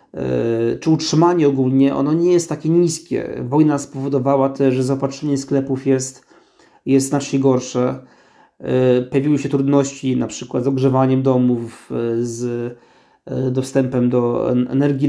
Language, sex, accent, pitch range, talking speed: Polish, male, native, 130-145 Hz, 120 wpm